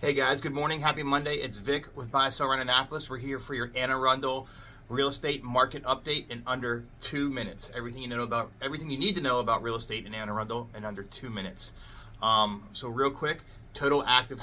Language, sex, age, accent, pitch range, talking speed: English, male, 30-49, American, 105-130 Hz, 205 wpm